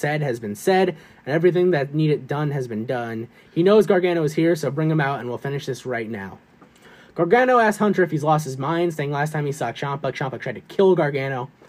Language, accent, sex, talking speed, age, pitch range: English, American, male, 235 wpm, 20-39, 125-175 Hz